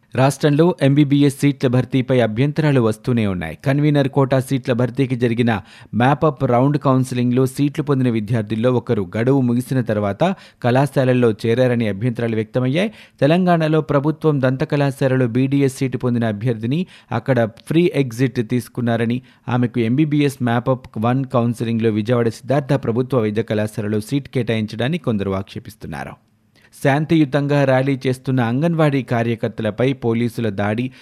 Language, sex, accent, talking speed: Telugu, male, native, 115 wpm